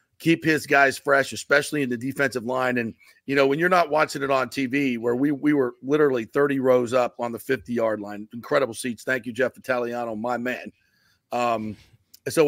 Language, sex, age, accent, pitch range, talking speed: English, male, 40-59, American, 115-140 Hz, 195 wpm